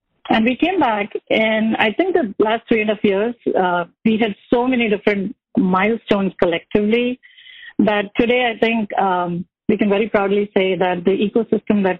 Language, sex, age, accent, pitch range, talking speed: English, female, 50-69, Indian, 190-235 Hz, 180 wpm